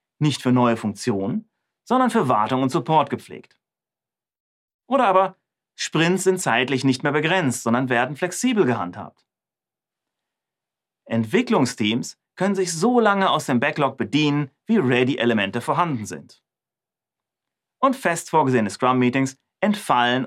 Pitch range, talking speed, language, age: 120-185 Hz, 120 wpm, German, 30-49